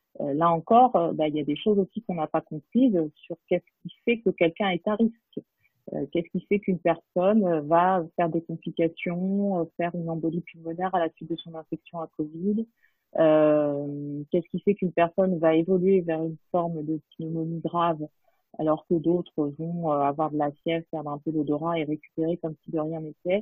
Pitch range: 155-185 Hz